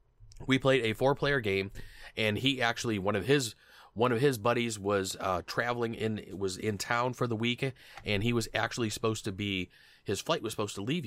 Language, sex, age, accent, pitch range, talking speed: English, male, 30-49, American, 100-120 Hz, 210 wpm